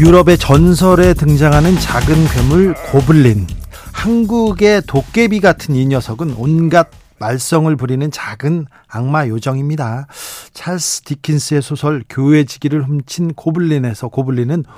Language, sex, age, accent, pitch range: Korean, male, 40-59, native, 125-165 Hz